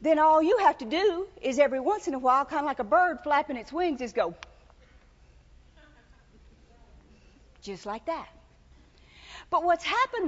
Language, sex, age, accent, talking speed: English, female, 50-69, American, 165 wpm